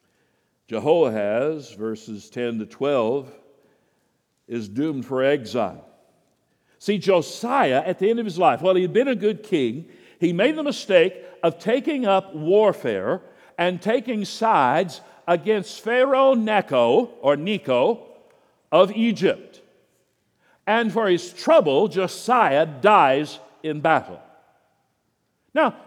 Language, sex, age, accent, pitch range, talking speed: English, male, 60-79, American, 175-245 Hz, 120 wpm